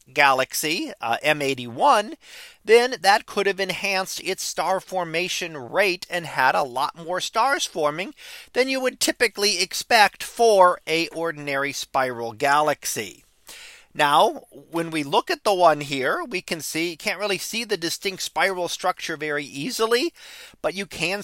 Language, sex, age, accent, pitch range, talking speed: English, male, 40-59, American, 150-205 Hz, 150 wpm